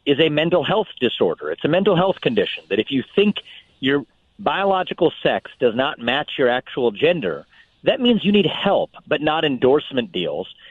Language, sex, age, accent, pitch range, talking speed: English, male, 40-59, American, 130-195 Hz, 180 wpm